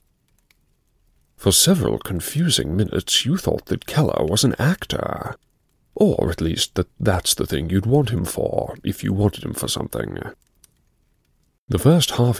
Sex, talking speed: male, 150 wpm